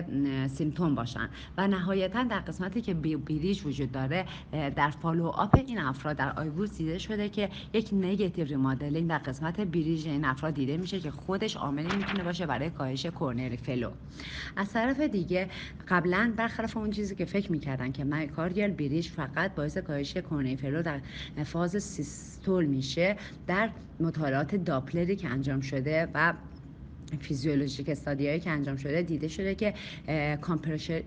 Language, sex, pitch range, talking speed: Persian, female, 140-185 Hz, 150 wpm